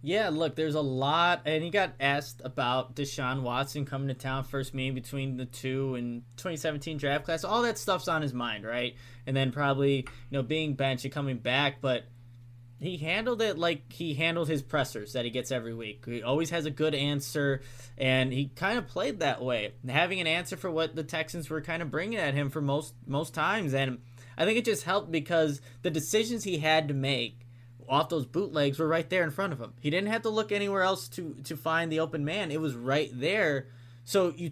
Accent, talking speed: American, 220 wpm